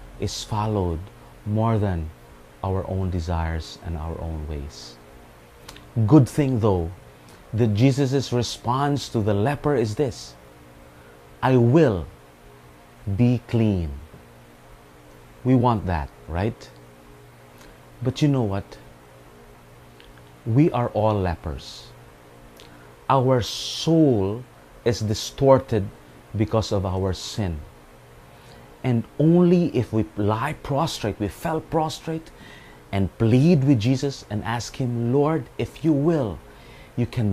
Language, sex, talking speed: English, male, 110 wpm